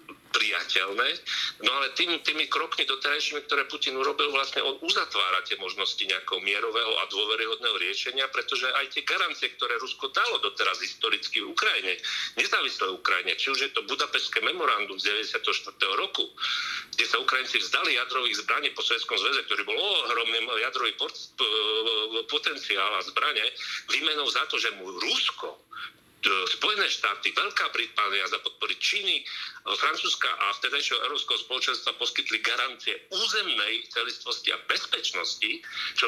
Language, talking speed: Slovak, 140 wpm